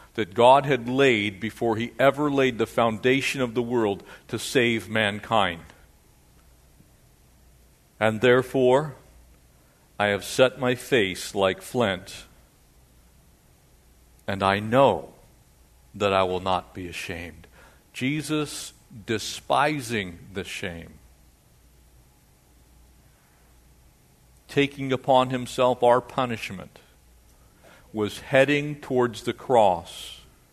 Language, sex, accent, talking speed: English, male, American, 95 wpm